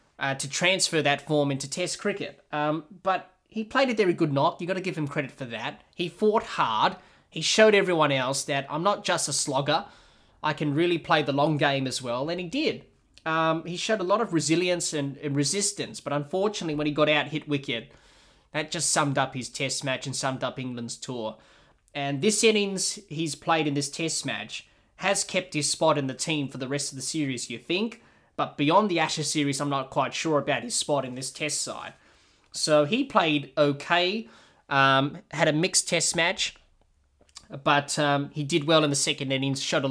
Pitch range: 135-170 Hz